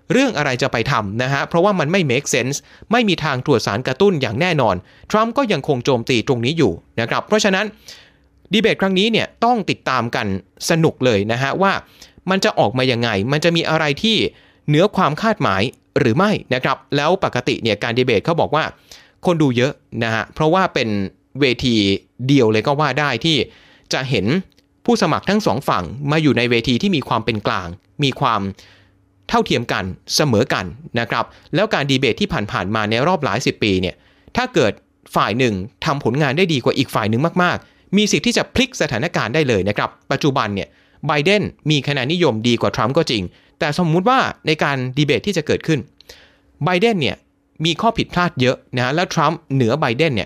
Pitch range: 115-175 Hz